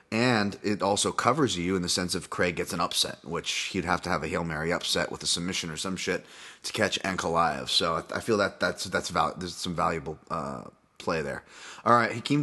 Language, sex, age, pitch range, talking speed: English, male, 30-49, 95-120 Hz, 220 wpm